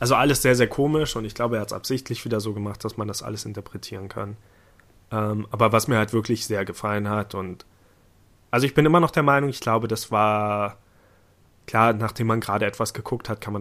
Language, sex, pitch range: German, male, 105-115 Hz